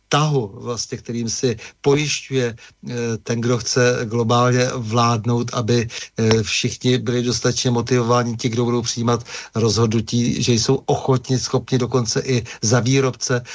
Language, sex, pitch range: Czech, male, 115-125 Hz